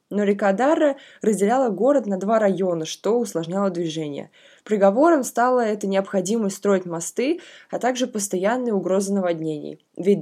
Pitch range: 185-245 Hz